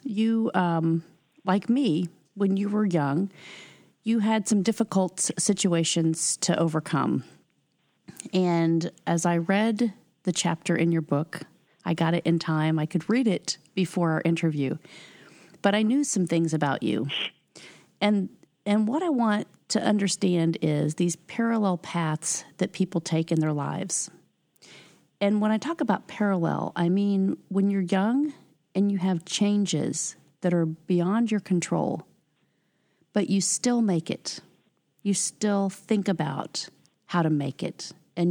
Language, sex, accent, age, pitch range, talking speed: English, female, American, 40-59, 165-205 Hz, 145 wpm